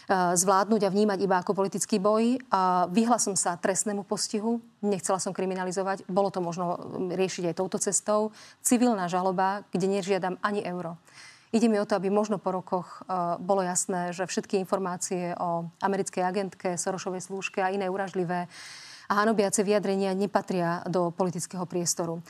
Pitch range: 180-210 Hz